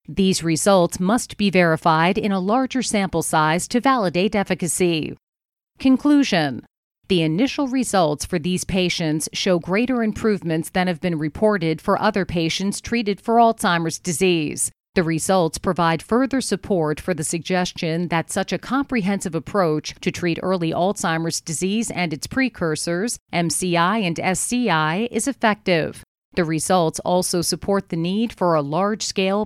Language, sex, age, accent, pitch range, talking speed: English, female, 40-59, American, 170-210 Hz, 140 wpm